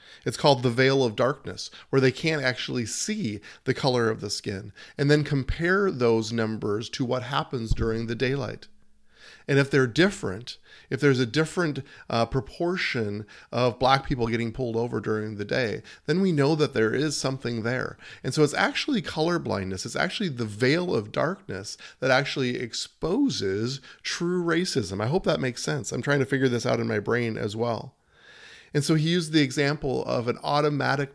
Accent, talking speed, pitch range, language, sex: American, 185 wpm, 115-145 Hz, English, male